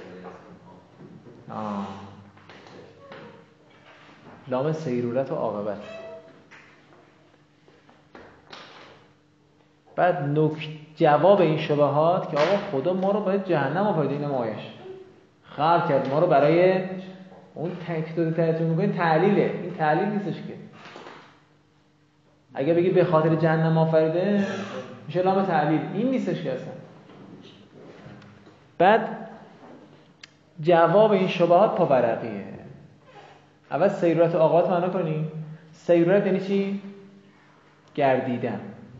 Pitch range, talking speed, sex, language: 150-185 Hz, 95 wpm, male, Persian